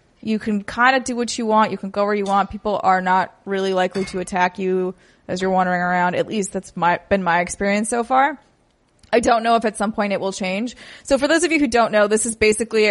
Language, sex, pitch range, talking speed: English, female, 185-220 Hz, 260 wpm